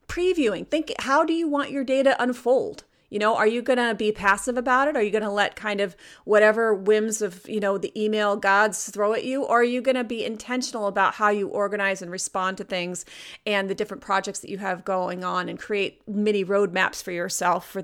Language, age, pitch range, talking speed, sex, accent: English, 30-49, 205-260 Hz, 220 wpm, female, American